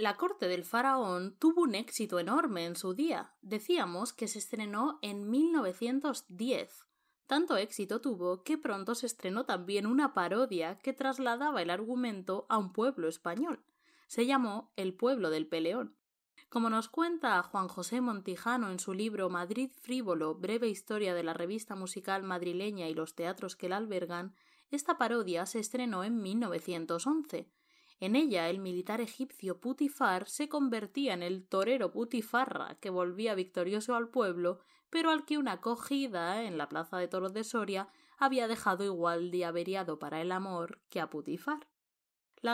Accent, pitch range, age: Spanish, 185-255 Hz, 20-39